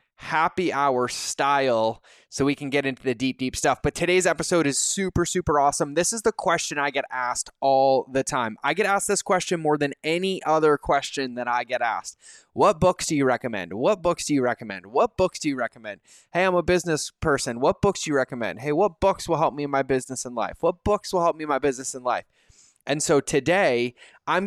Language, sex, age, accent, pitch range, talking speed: English, male, 20-39, American, 130-170 Hz, 230 wpm